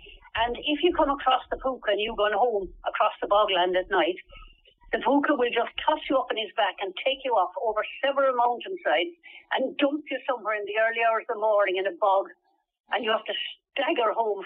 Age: 60-79